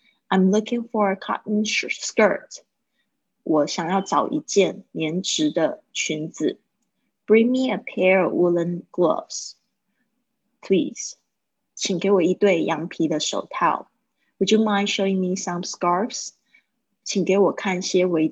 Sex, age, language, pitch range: female, 20-39, Chinese, 180-225 Hz